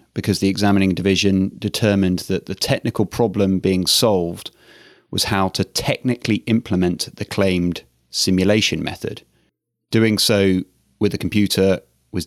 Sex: male